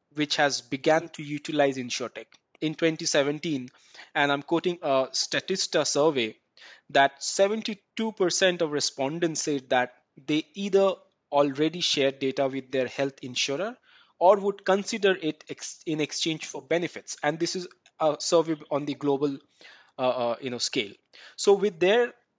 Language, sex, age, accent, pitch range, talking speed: English, male, 20-39, Indian, 140-180 Hz, 145 wpm